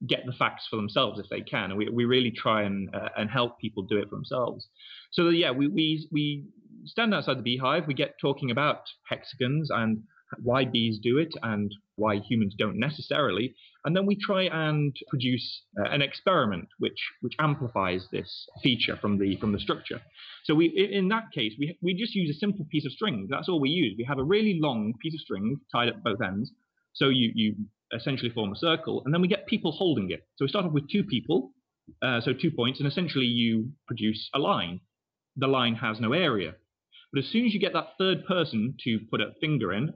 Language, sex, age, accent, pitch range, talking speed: English, male, 30-49, British, 110-160 Hz, 220 wpm